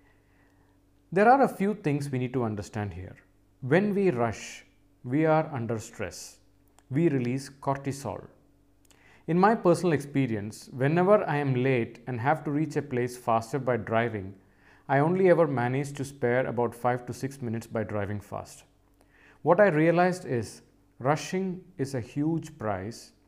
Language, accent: English, Indian